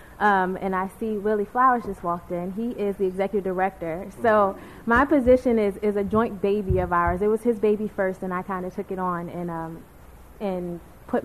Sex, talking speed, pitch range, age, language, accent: female, 215 wpm, 180-210 Hz, 20-39, English, American